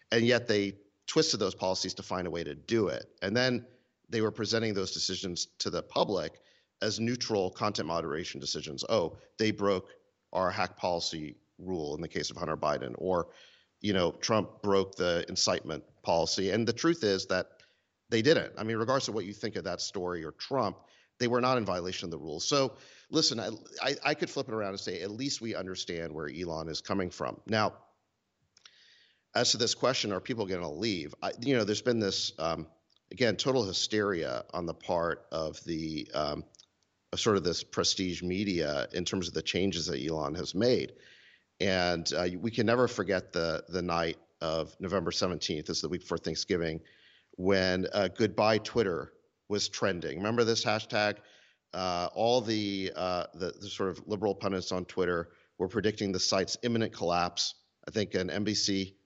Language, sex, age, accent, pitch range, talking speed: English, male, 40-59, American, 90-115 Hz, 185 wpm